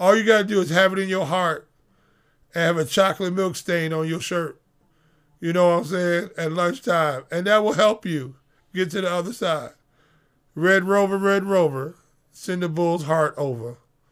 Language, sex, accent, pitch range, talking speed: English, male, American, 160-225 Hz, 190 wpm